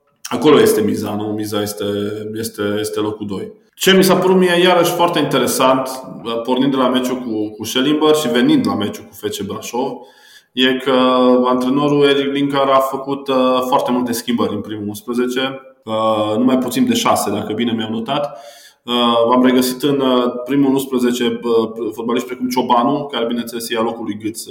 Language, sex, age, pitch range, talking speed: Romanian, male, 20-39, 110-135 Hz, 165 wpm